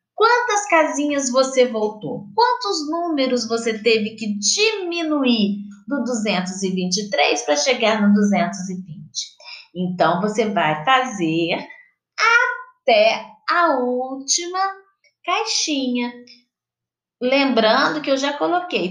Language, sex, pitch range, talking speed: Portuguese, female, 200-335 Hz, 90 wpm